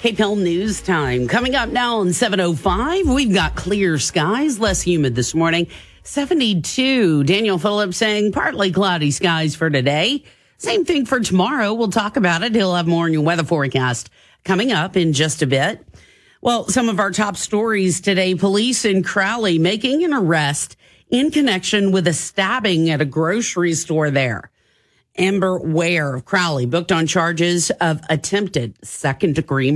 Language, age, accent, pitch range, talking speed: English, 40-59, American, 160-210 Hz, 160 wpm